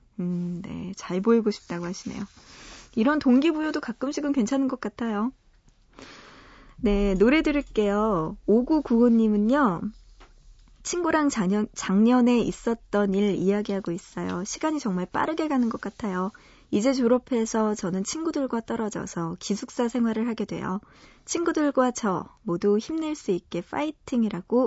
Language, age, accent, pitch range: Korean, 20-39, native, 195-265 Hz